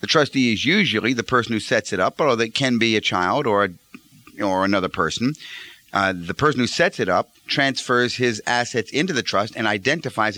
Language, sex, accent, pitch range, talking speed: English, male, American, 110-140 Hz, 210 wpm